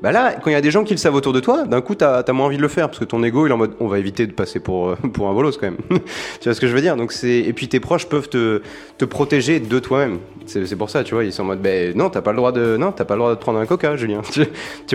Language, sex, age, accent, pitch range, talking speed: French, male, 30-49, French, 115-155 Hz, 355 wpm